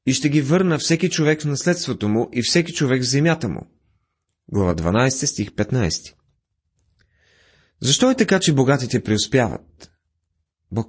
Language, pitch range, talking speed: Bulgarian, 90-145 Hz, 145 wpm